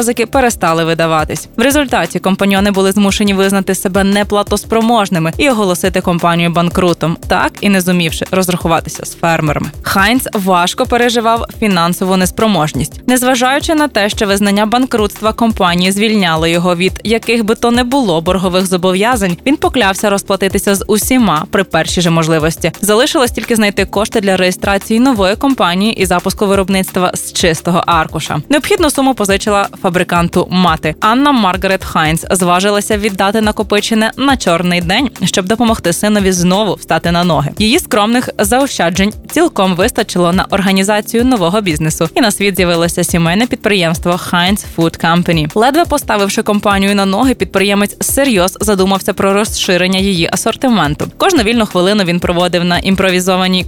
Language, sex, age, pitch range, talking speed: Ukrainian, female, 20-39, 175-220 Hz, 140 wpm